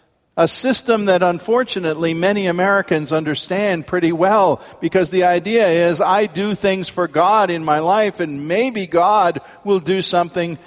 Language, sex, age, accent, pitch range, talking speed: English, male, 50-69, American, 150-205 Hz, 150 wpm